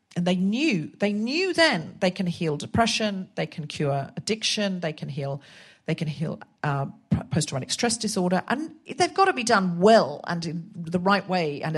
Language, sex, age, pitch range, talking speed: English, female, 40-59, 165-215 Hz, 195 wpm